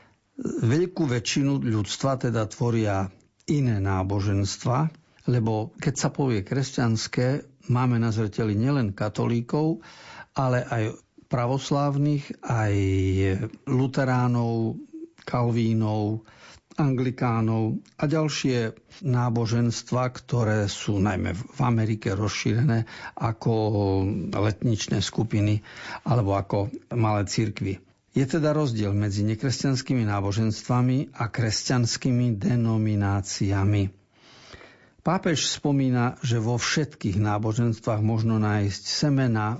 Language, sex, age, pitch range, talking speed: Slovak, male, 50-69, 105-130 Hz, 85 wpm